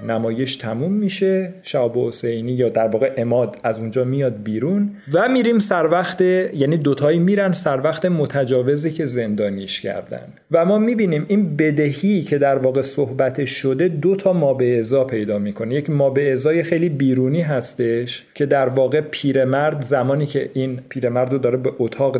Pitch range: 125-155 Hz